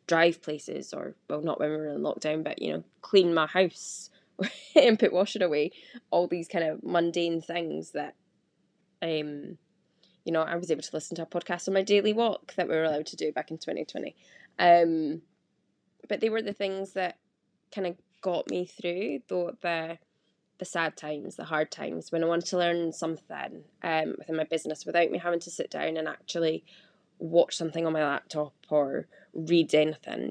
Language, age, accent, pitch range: English, 10-29, British, 160-195 Hz